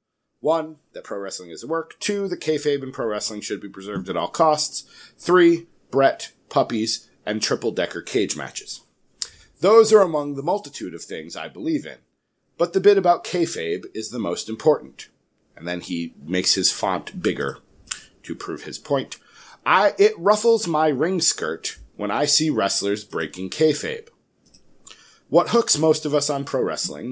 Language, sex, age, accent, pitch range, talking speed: English, male, 40-59, American, 115-170 Hz, 170 wpm